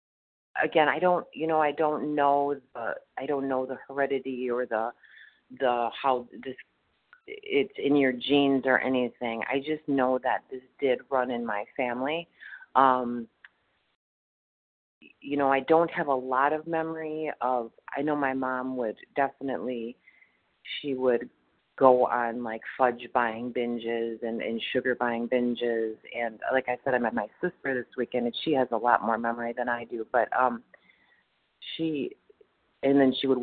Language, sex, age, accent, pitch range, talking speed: English, female, 40-59, American, 120-140 Hz, 165 wpm